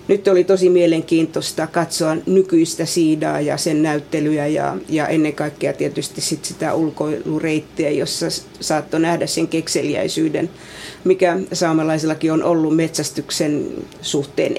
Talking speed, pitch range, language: 110 wpm, 160-185 Hz, Finnish